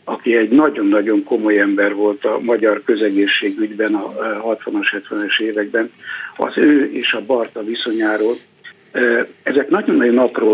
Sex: male